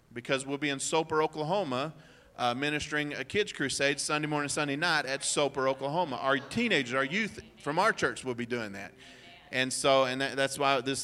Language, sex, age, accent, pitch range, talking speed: English, male, 30-49, American, 125-150 Hz, 195 wpm